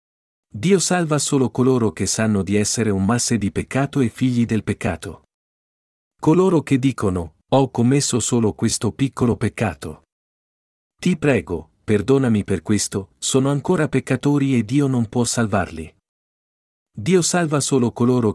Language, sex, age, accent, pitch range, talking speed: Italian, male, 50-69, native, 105-135 Hz, 135 wpm